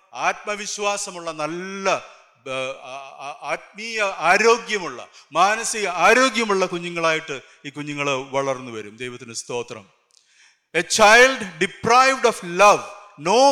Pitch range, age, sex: 150-210 Hz, 50-69, male